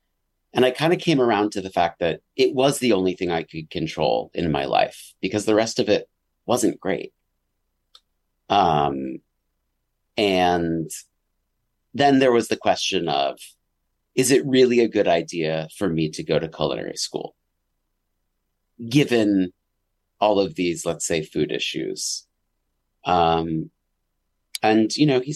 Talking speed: 145 wpm